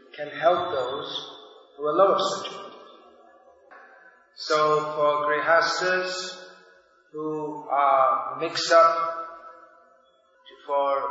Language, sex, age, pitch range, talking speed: English, male, 40-59, 135-160 Hz, 85 wpm